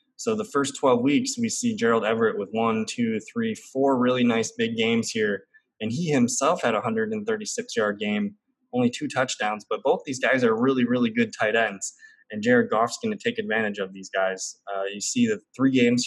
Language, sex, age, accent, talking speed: English, male, 20-39, American, 210 wpm